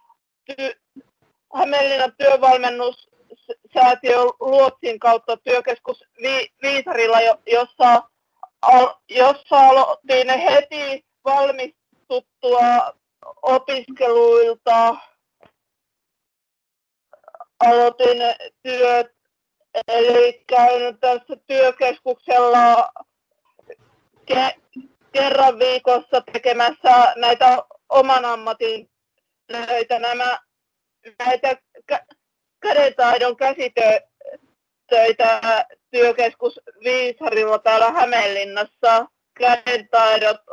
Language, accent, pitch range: Finnish, native, 235-275 Hz